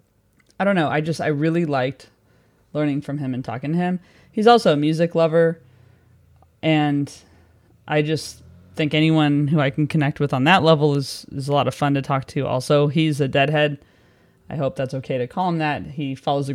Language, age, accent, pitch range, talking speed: English, 20-39, American, 130-155 Hz, 205 wpm